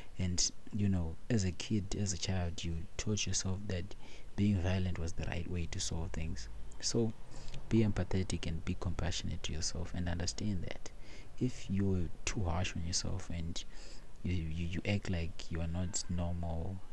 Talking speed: 175 wpm